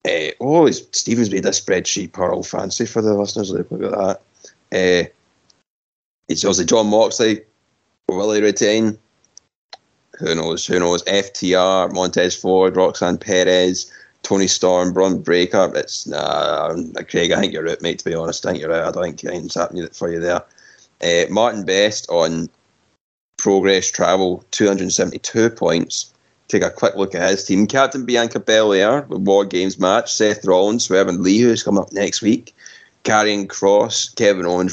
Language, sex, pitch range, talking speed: English, male, 90-110 Hz, 165 wpm